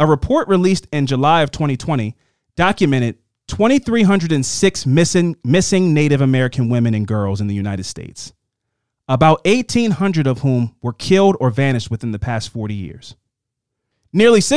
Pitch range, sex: 120-165 Hz, male